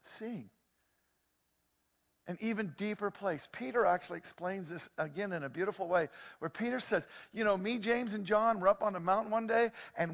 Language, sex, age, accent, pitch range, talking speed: English, male, 50-69, American, 155-230 Hz, 185 wpm